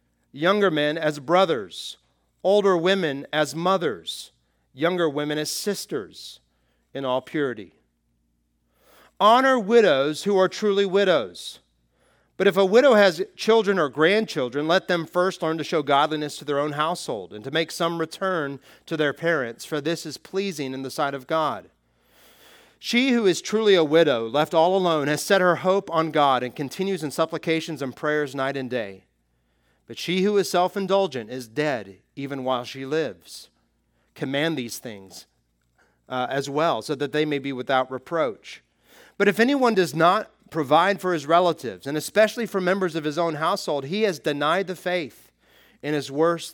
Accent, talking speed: American, 170 wpm